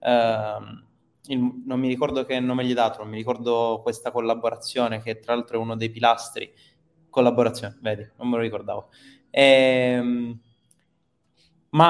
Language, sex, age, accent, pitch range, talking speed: Italian, male, 20-39, native, 115-130 Hz, 150 wpm